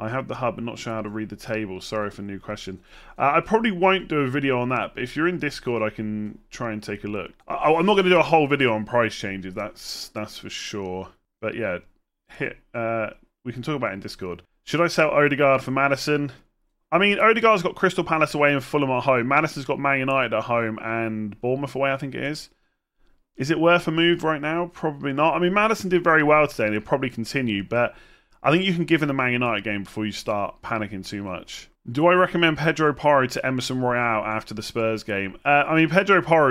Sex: male